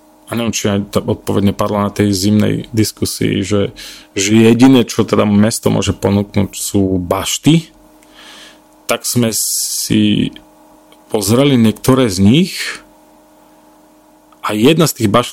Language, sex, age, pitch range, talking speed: Slovak, male, 30-49, 100-120 Hz, 120 wpm